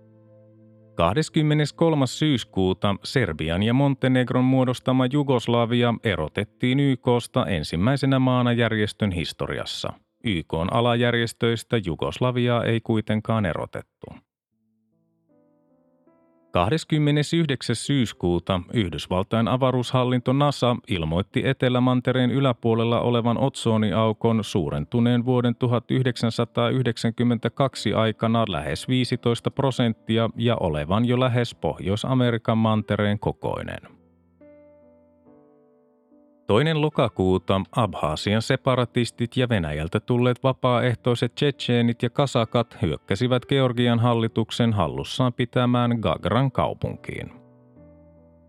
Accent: native